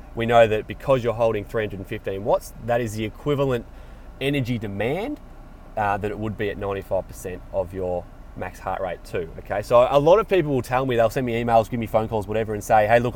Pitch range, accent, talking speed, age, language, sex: 105-130 Hz, Australian, 225 wpm, 30-49, English, male